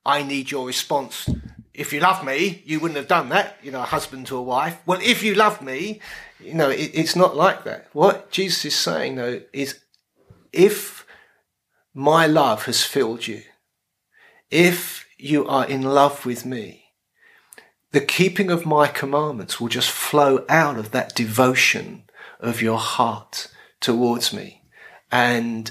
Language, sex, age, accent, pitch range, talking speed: English, male, 40-59, British, 130-175 Hz, 160 wpm